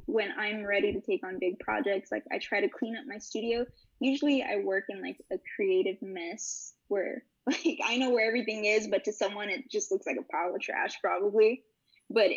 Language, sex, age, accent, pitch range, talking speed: English, female, 10-29, American, 200-280 Hz, 215 wpm